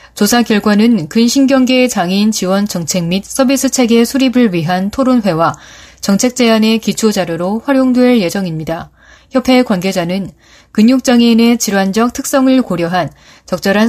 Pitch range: 180-245 Hz